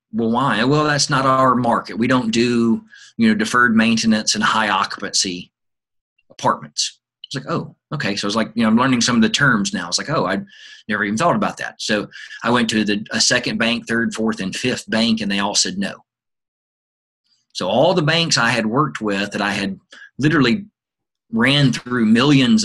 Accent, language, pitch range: American, English, 110-150 Hz